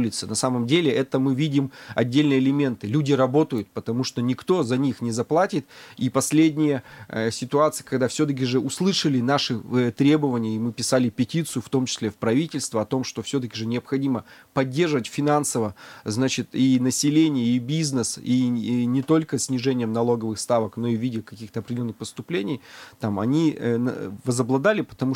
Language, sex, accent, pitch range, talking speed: Russian, male, native, 115-140 Hz, 165 wpm